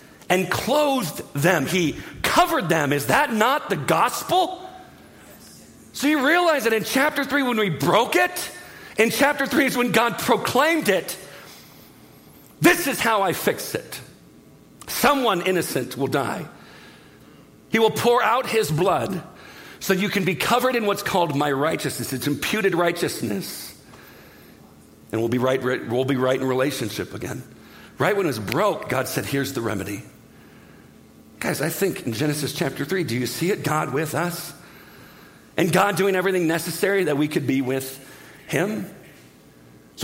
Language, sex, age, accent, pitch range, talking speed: English, male, 50-69, American, 155-225 Hz, 155 wpm